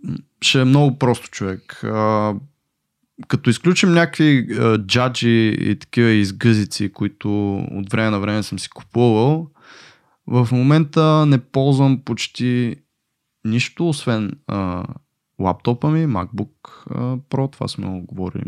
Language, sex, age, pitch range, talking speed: Bulgarian, male, 20-39, 100-130 Hz, 120 wpm